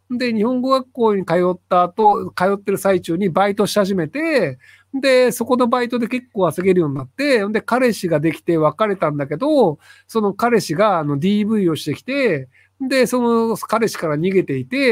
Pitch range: 165-245 Hz